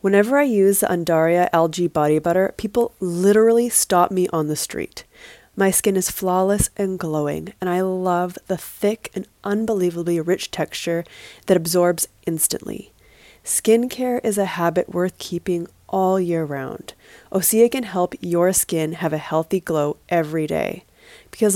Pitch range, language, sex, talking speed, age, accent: 165-200 Hz, English, female, 155 wpm, 20-39, American